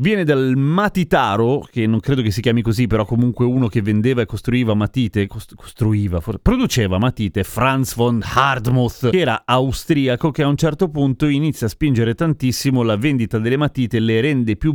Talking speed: 175 wpm